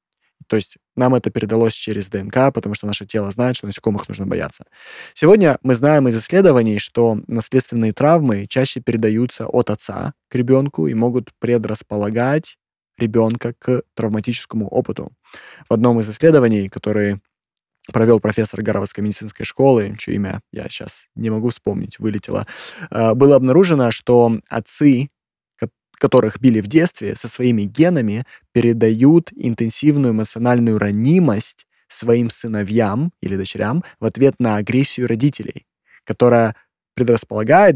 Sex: male